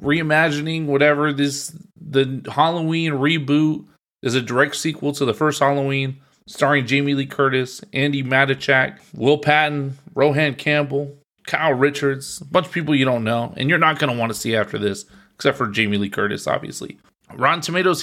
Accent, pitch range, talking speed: American, 125-155 Hz, 165 wpm